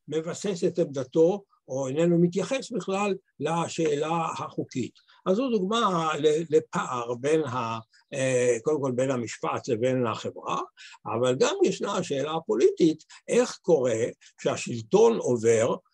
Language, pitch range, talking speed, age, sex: Hebrew, 135-190 Hz, 115 wpm, 60-79, male